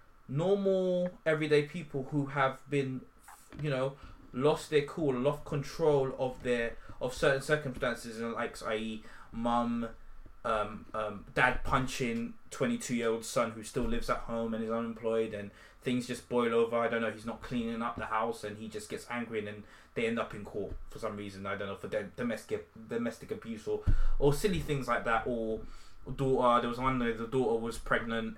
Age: 20-39